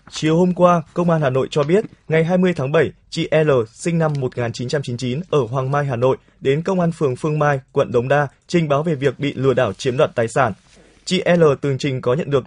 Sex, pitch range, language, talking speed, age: male, 130-170 Hz, Vietnamese, 240 wpm, 20-39